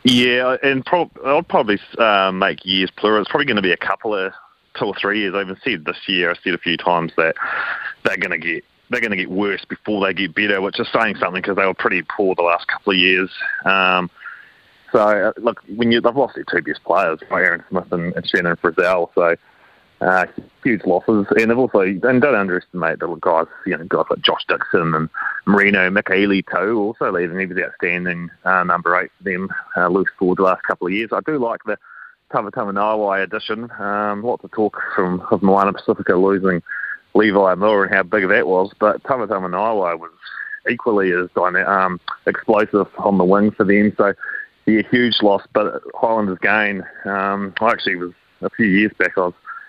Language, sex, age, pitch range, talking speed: English, male, 20-39, 95-105 Hz, 205 wpm